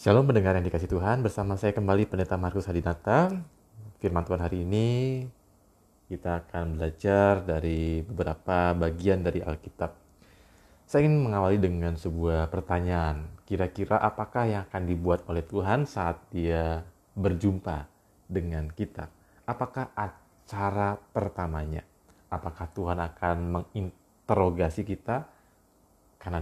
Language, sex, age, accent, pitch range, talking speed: Indonesian, male, 30-49, native, 85-105 Hz, 115 wpm